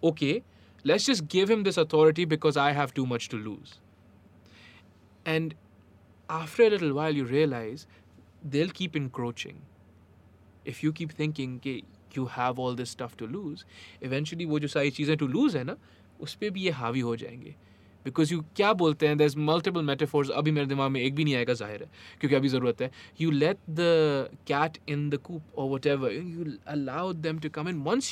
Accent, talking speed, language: Indian, 170 wpm, English